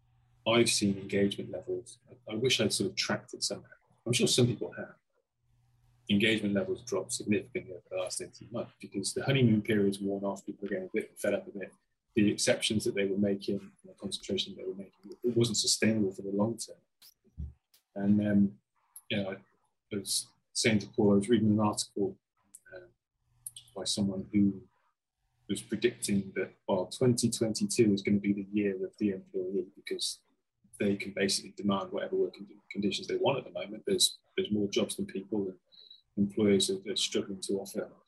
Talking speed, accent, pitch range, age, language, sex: 190 wpm, British, 100-120 Hz, 20-39, English, male